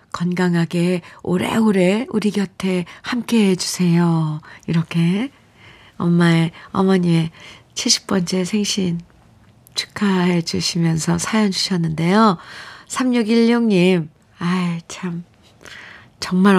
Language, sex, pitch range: Korean, female, 170-215 Hz